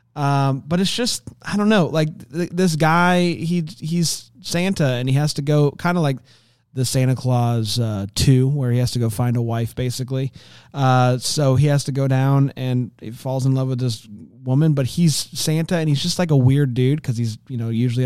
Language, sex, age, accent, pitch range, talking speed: English, male, 30-49, American, 120-145 Hz, 220 wpm